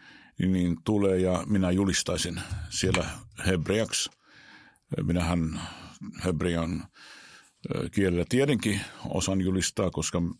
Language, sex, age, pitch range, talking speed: Finnish, male, 50-69, 85-100 Hz, 80 wpm